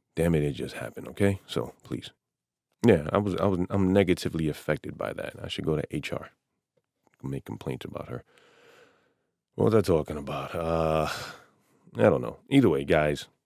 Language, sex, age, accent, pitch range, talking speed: English, male, 30-49, American, 75-90 Hz, 180 wpm